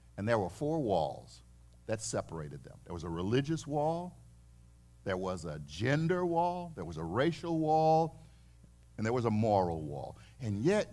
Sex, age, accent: male, 50-69, American